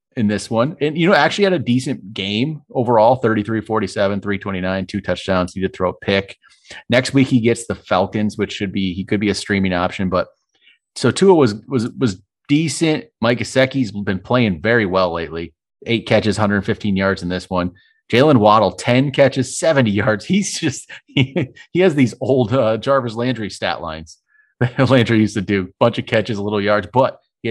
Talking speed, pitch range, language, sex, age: 195 wpm, 100-130 Hz, English, male, 30-49